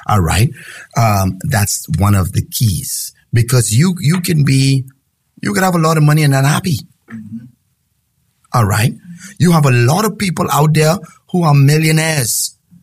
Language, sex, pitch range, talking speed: English, male, 115-155 Hz, 165 wpm